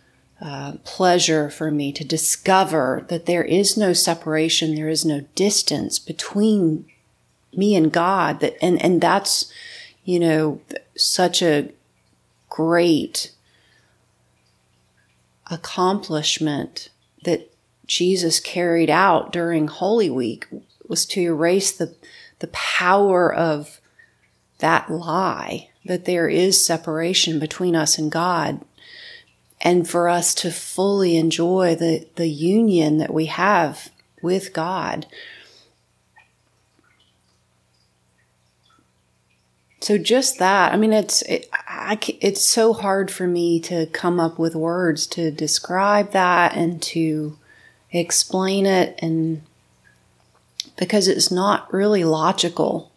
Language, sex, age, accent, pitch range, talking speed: English, female, 40-59, American, 150-180 Hz, 110 wpm